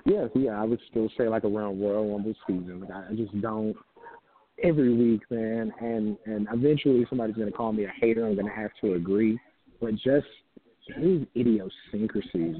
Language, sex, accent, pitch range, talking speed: English, male, American, 110-135 Hz, 170 wpm